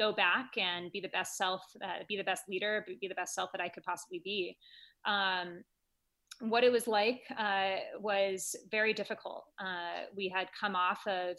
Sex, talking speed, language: female, 190 wpm, English